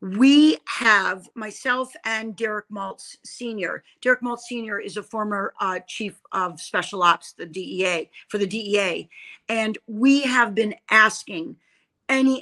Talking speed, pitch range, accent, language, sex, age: 140 wpm, 190-235 Hz, American, English, female, 40-59